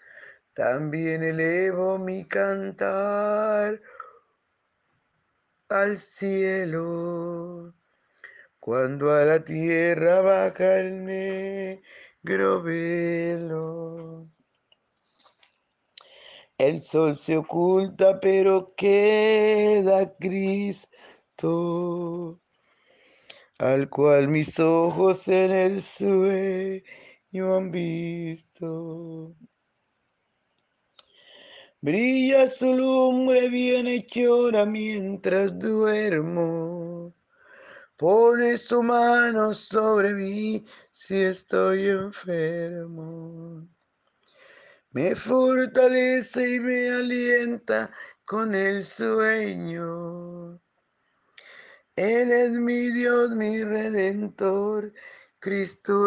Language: Spanish